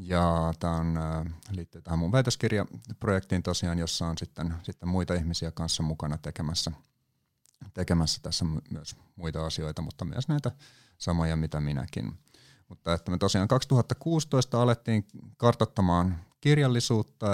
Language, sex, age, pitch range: Finnish, male, 30-49, 85-115 Hz